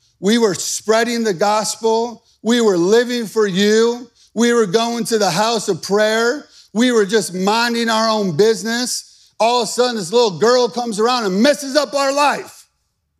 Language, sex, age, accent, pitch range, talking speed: English, male, 50-69, American, 215-250 Hz, 175 wpm